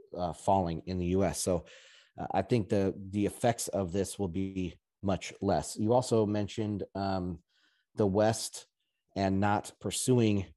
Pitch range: 95-105 Hz